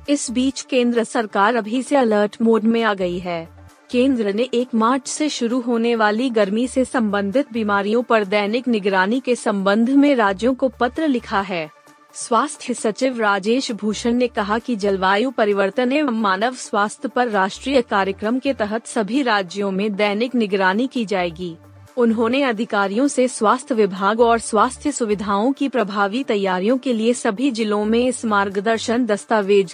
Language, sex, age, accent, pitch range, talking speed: Hindi, female, 30-49, native, 205-250 Hz, 155 wpm